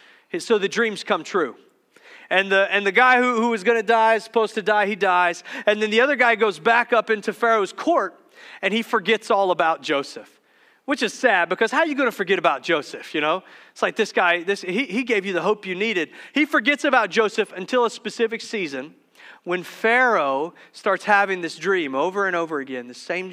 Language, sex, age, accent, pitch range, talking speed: English, male, 40-59, American, 165-220 Hz, 220 wpm